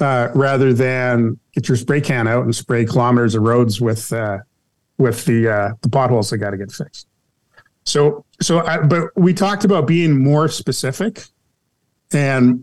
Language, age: English, 40-59